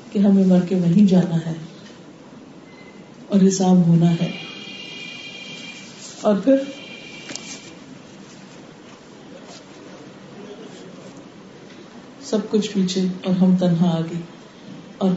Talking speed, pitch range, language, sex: 85 wpm, 185-245 Hz, Urdu, female